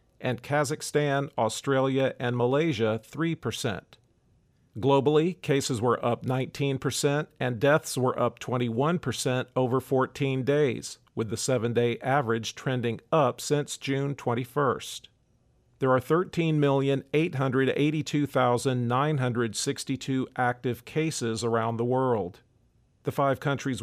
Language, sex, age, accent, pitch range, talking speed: English, male, 50-69, American, 120-140 Hz, 100 wpm